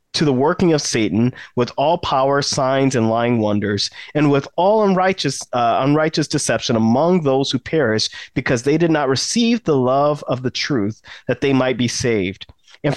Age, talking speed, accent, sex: 30-49, 180 wpm, American, male